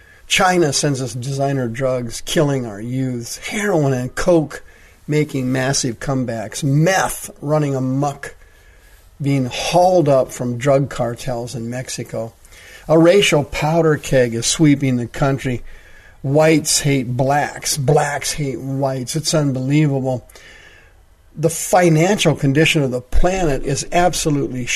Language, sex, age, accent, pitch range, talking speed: English, male, 50-69, American, 125-150 Hz, 120 wpm